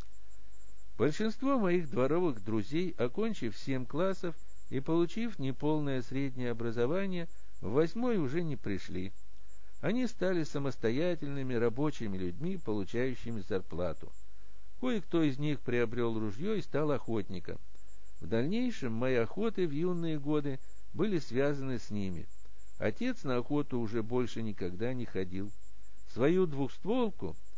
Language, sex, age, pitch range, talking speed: Russian, male, 60-79, 110-160 Hz, 115 wpm